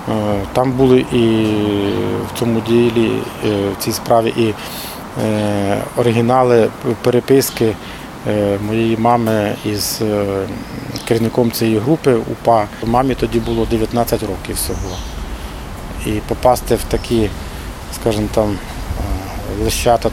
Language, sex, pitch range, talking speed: Ukrainian, male, 105-125 Hz, 90 wpm